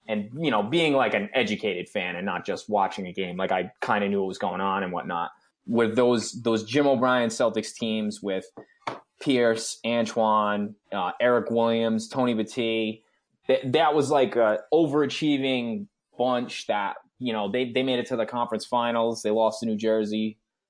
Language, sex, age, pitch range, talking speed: English, male, 20-39, 105-130 Hz, 185 wpm